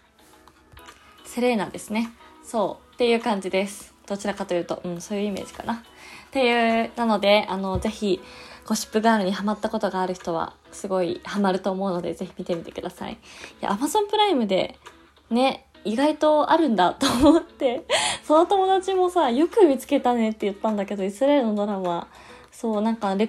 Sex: female